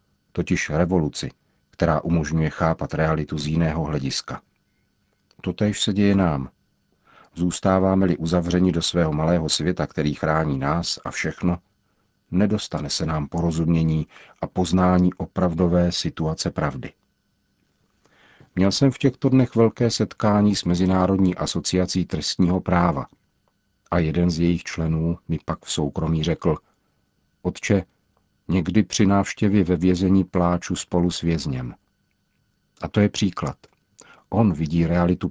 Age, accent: 50-69, native